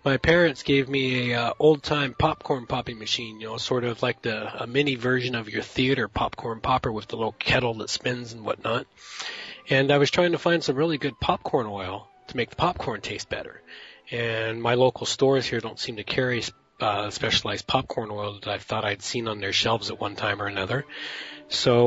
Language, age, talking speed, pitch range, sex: English, 30-49, 210 wpm, 120-155 Hz, male